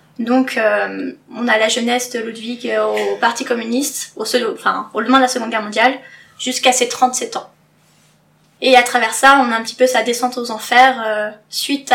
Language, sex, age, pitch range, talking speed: French, female, 10-29, 225-260 Hz, 200 wpm